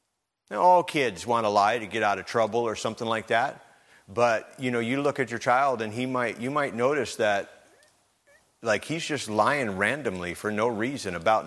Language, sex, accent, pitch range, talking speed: English, male, American, 110-135 Hz, 205 wpm